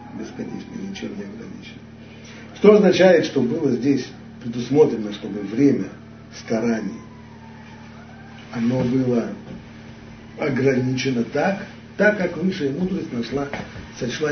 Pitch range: 115-140 Hz